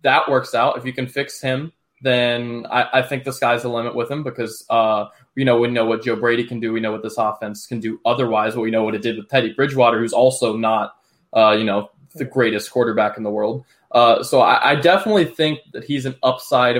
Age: 20-39